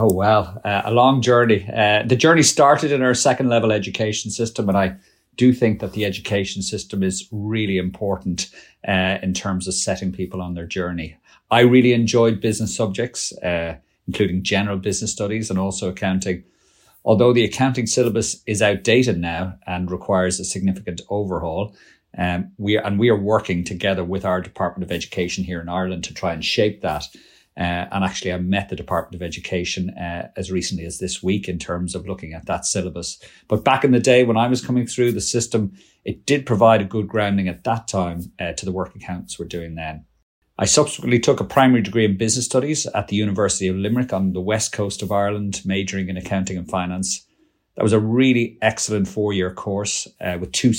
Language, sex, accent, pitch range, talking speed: English, male, Irish, 95-115 Hz, 200 wpm